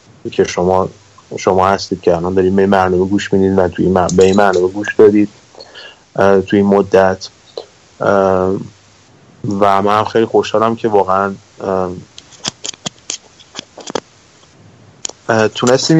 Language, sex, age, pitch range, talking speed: Persian, male, 30-49, 95-115 Hz, 100 wpm